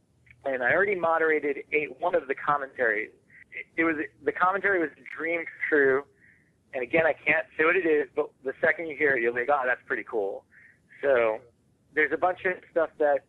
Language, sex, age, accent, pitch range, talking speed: English, male, 30-49, American, 130-170 Hz, 205 wpm